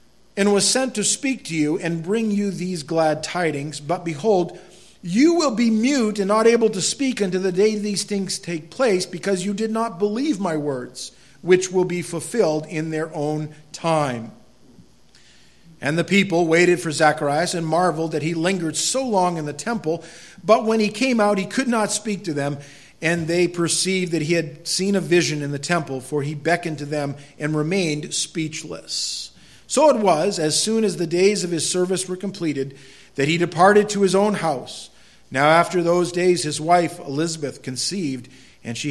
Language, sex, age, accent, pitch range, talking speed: English, male, 50-69, American, 150-195 Hz, 190 wpm